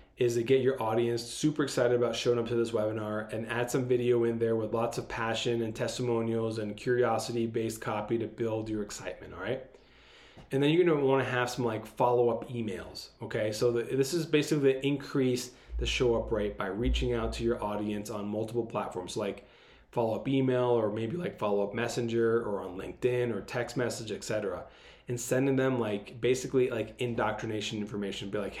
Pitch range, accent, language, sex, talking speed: 110-130 Hz, American, English, male, 185 wpm